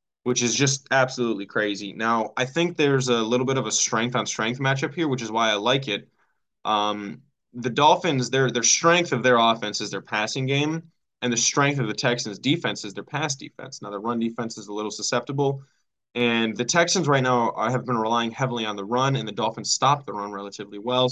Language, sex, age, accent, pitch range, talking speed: English, male, 10-29, American, 110-135 Hz, 220 wpm